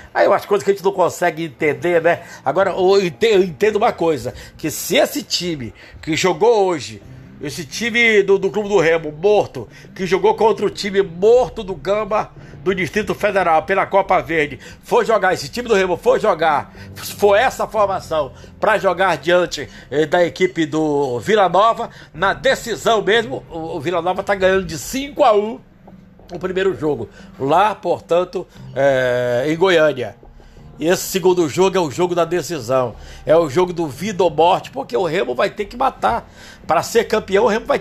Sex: male